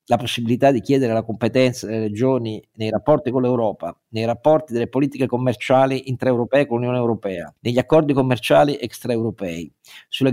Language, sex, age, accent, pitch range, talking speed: Italian, male, 50-69, native, 105-135 Hz, 150 wpm